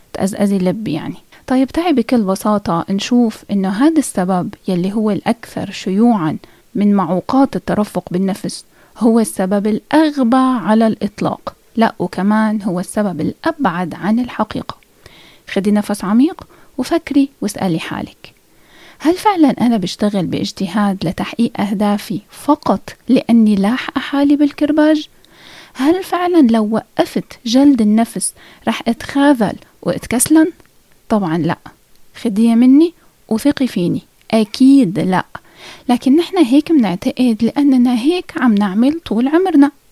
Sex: female